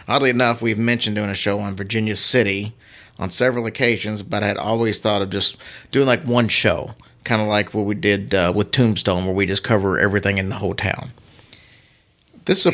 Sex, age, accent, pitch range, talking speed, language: male, 40-59, American, 100-120 Hz, 210 wpm, English